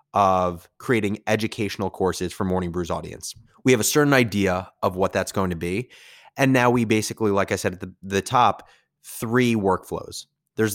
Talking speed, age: 185 wpm, 20-39